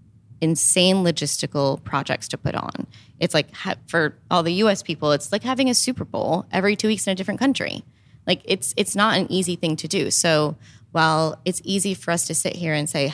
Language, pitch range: English, 135-180 Hz